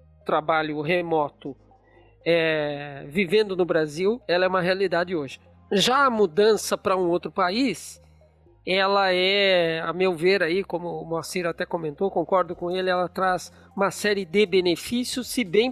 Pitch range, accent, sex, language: 170-220 Hz, Brazilian, male, Portuguese